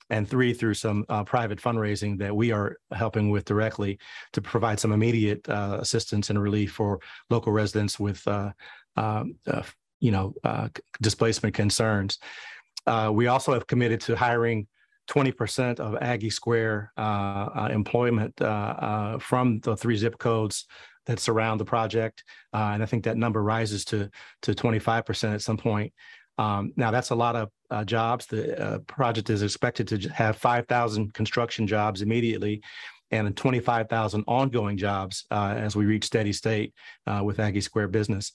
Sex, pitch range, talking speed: male, 105-115 Hz, 165 wpm